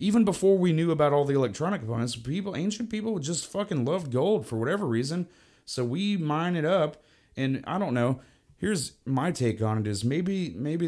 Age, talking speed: 30-49, 200 wpm